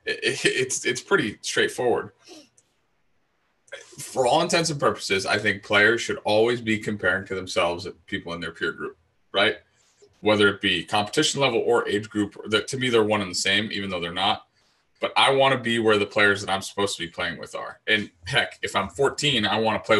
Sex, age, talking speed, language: male, 20-39, 205 wpm, English